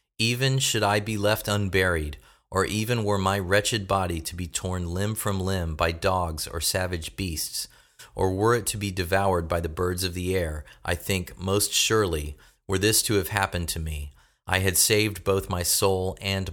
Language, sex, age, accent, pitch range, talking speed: English, male, 40-59, American, 85-105 Hz, 190 wpm